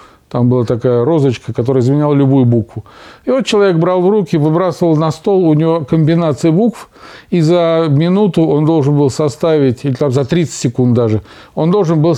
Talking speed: 180 wpm